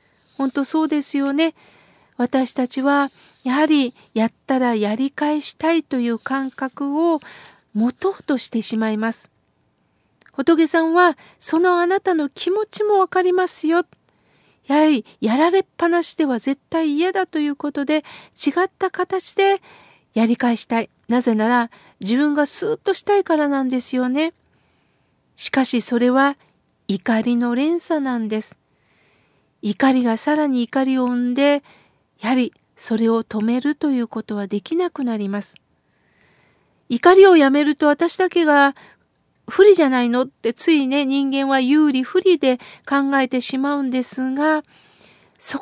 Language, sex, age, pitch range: Japanese, female, 50-69, 250-330 Hz